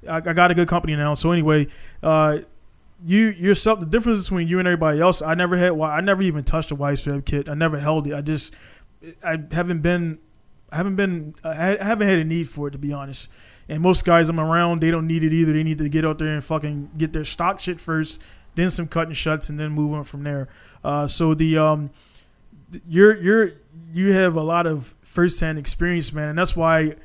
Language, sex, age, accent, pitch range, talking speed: English, male, 20-39, American, 150-170 Hz, 225 wpm